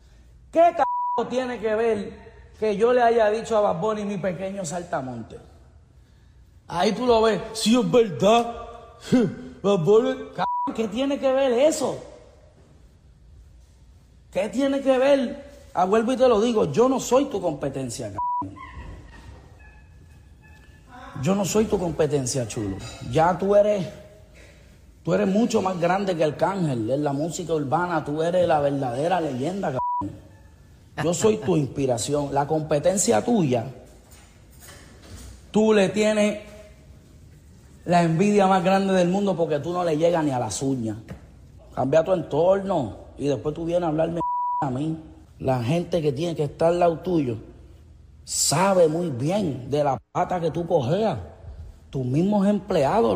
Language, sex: Spanish, male